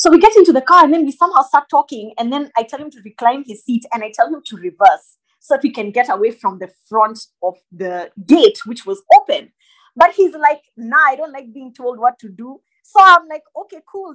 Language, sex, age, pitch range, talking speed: English, female, 20-39, 225-325 Hz, 250 wpm